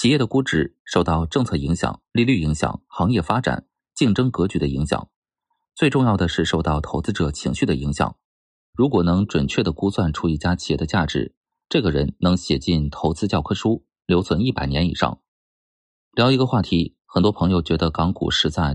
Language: Chinese